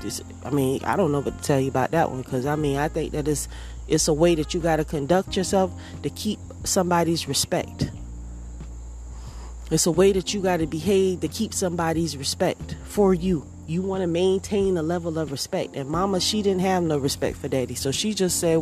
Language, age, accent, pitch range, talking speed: English, 30-49, American, 135-180 Hz, 215 wpm